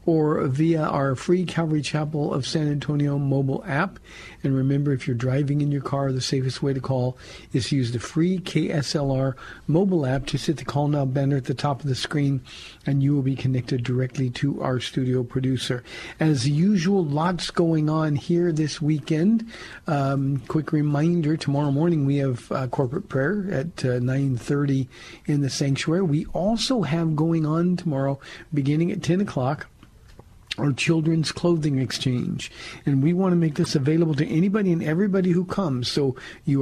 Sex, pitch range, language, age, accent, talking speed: male, 135-165 Hz, English, 50-69, American, 175 wpm